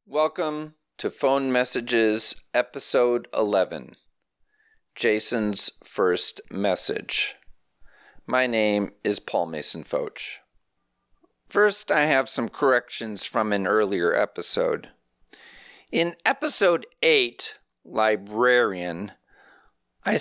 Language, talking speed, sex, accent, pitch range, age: English, 85 wpm, male, American, 110-185 Hz, 40-59